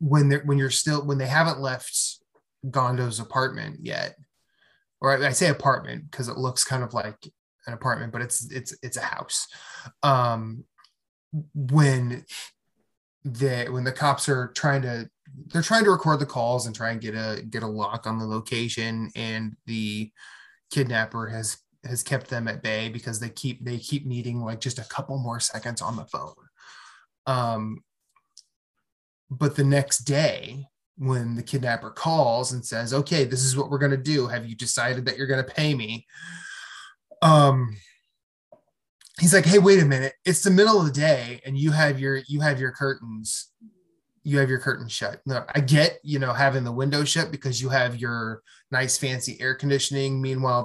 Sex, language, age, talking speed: male, English, 20-39, 180 wpm